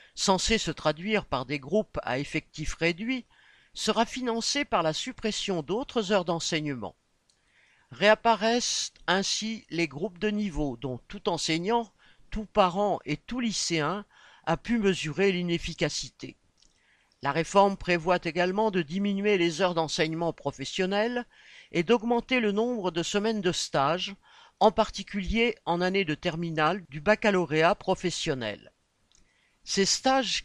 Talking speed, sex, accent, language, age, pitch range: 125 wpm, male, French, French, 50-69, 160-215 Hz